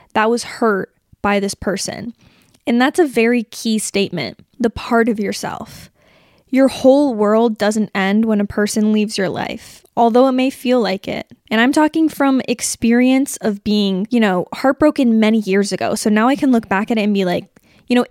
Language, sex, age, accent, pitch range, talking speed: English, female, 20-39, American, 205-255 Hz, 195 wpm